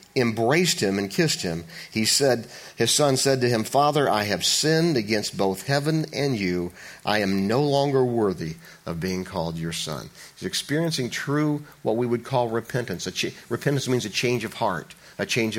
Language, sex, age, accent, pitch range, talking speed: English, male, 40-59, American, 105-145 Hz, 190 wpm